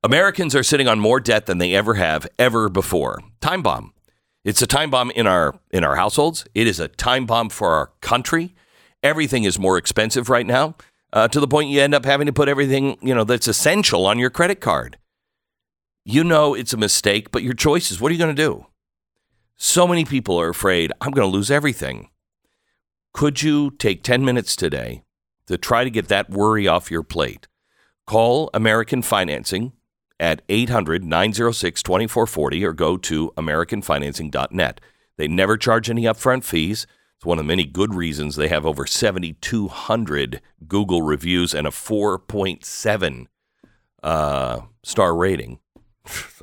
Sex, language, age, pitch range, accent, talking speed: male, English, 50-69, 85-125 Hz, American, 165 wpm